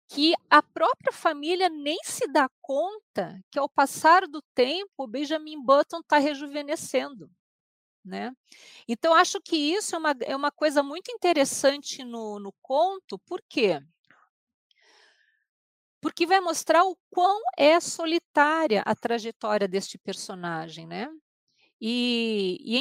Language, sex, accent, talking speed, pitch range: Portuguese, female, Brazilian, 130 wpm, 220-325 Hz